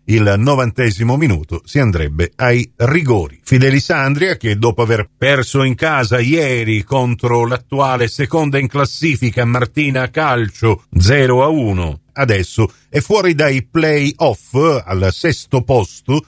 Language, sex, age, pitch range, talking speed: Italian, male, 50-69, 115-150 Hz, 115 wpm